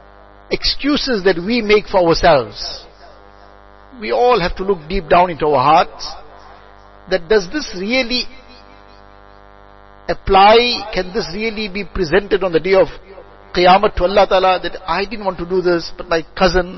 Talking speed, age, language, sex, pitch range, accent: 155 wpm, 60-79, English, male, 170-205 Hz, Indian